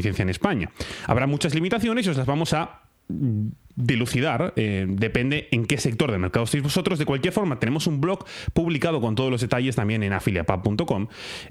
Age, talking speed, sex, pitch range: 30-49, 185 wpm, male, 110-160 Hz